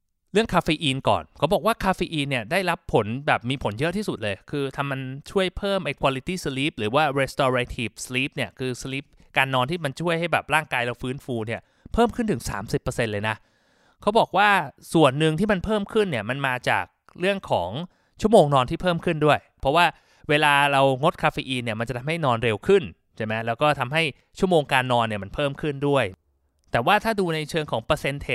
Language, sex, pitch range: Thai, male, 120-160 Hz